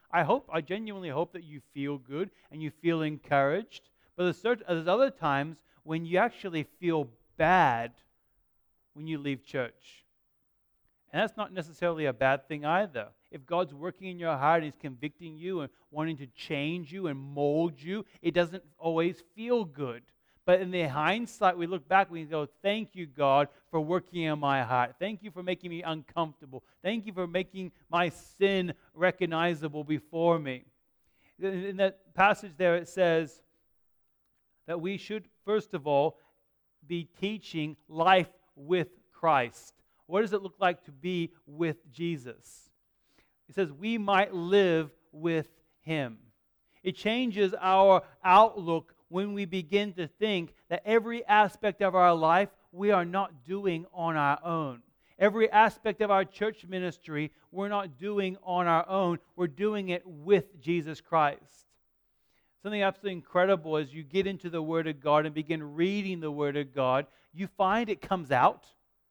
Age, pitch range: 40-59, 155-195 Hz